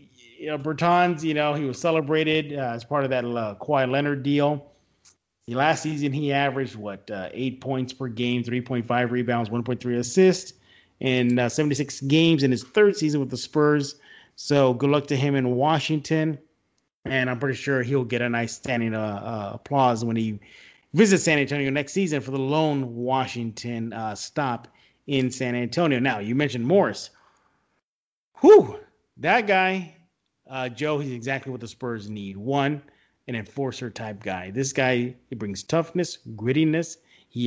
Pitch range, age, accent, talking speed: 120-145 Hz, 30-49, American, 175 wpm